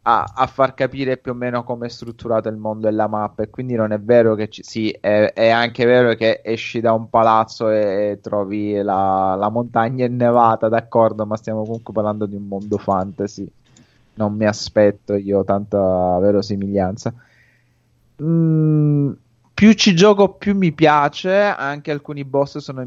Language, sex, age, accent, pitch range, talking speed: Italian, male, 20-39, native, 110-135 Hz, 175 wpm